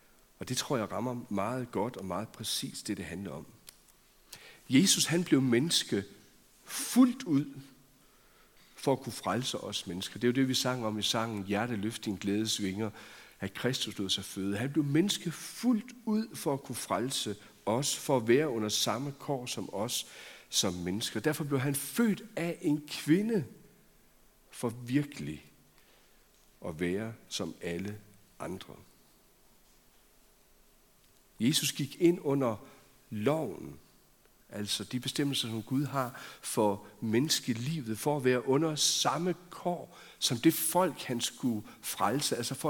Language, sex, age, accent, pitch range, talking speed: Danish, male, 60-79, native, 110-155 Hz, 145 wpm